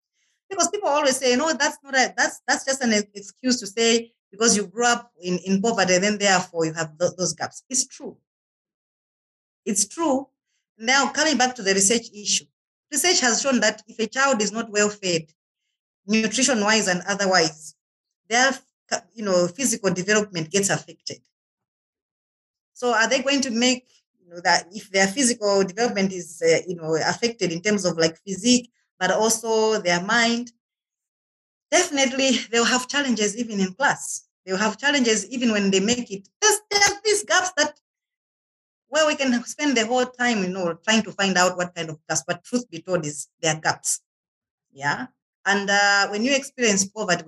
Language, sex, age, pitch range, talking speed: English, female, 30-49, 185-255 Hz, 180 wpm